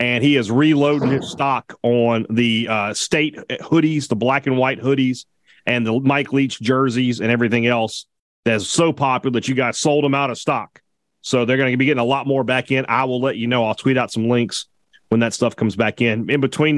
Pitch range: 120-150 Hz